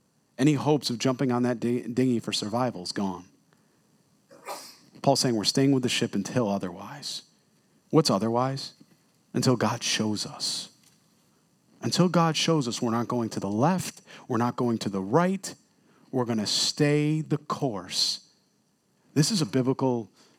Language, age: English, 40-59